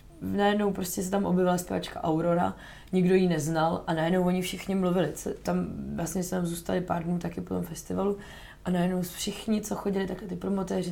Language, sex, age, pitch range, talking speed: Czech, female, 20-39, 175-200 Hz, 185 wpm